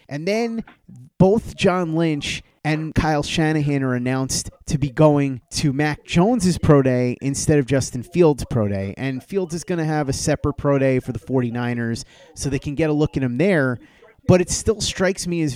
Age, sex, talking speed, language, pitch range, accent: 30-49, male, 200 wpm, English, 125-155 Hz, American